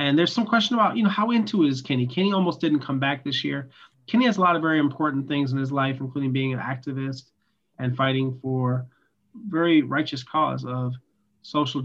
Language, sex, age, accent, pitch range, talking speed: English, male, 30-49, American, 130-155 Hz, 210 wpm